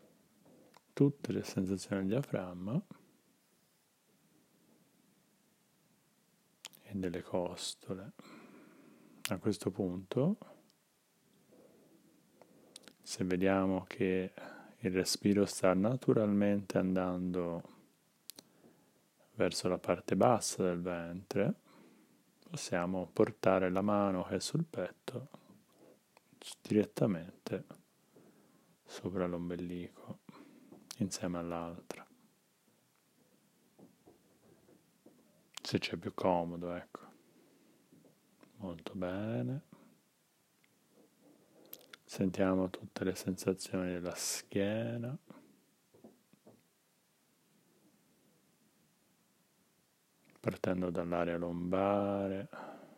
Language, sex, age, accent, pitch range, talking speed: Italian, male, 30-49, native, 90-110 Hz, 60 wpm